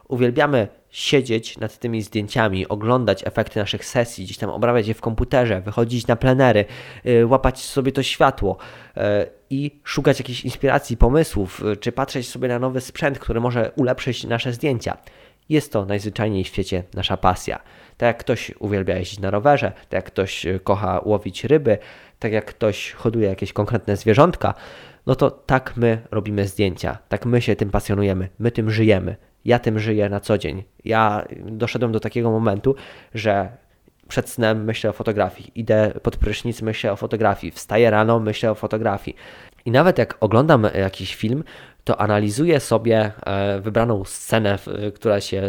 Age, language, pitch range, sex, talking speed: 20-39, Polish, 100-120 Hz, male, 160 wpm